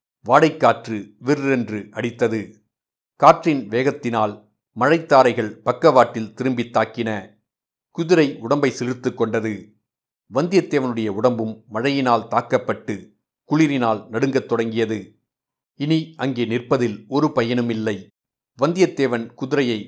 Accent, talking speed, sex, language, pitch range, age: native, 80 wpm, male, Tamil, 110-135 Hz, 60-79